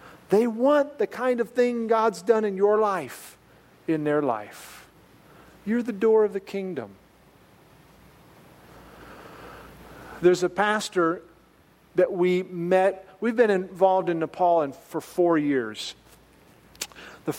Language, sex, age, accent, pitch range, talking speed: English, male, 40-59, American, 175-225 Hz, 120 wpm